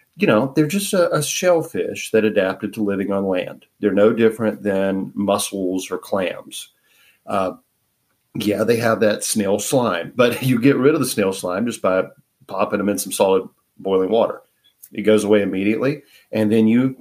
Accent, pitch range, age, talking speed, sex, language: American, 100-130 Hz, 40-59, 180 wpm, male, English